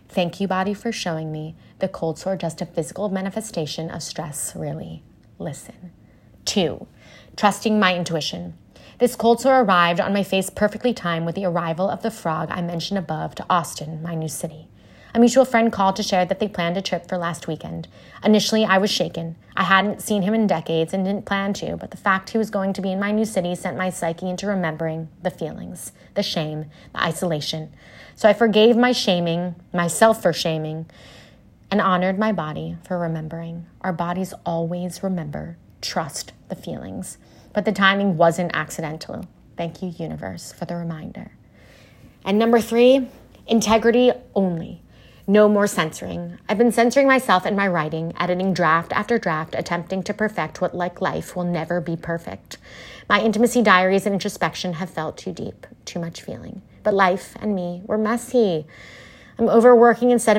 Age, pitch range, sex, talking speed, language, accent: 20-39, 165-205 Hz, female, 175 wpm, English, American